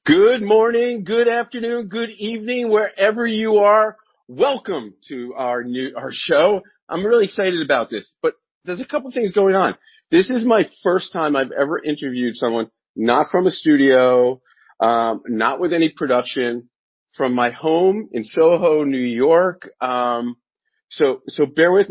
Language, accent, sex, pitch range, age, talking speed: English, American, male, 125-170 Hz, 40-59, 155 wpm